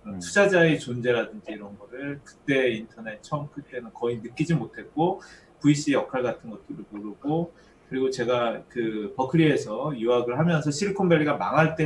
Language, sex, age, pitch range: Korean, male, 30-49, 120-170 Hz